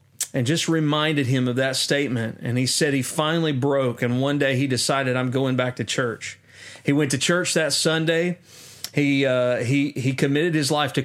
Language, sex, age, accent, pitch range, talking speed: English, male, 40-59, American, 130-150 Hz, 200 wpm